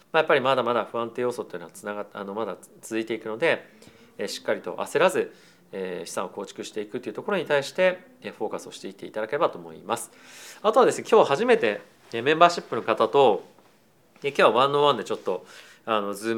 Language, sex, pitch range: Japanese, male, 110-140 Hz